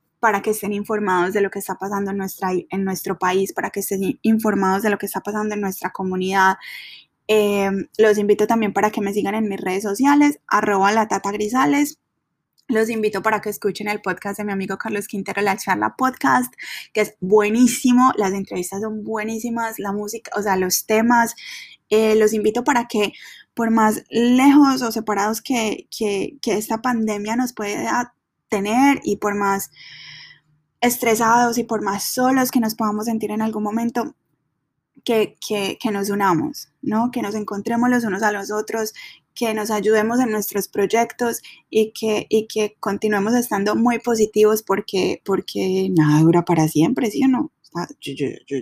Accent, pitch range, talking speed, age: Colombian, 195-235 Hz, 180 wpm, 10-29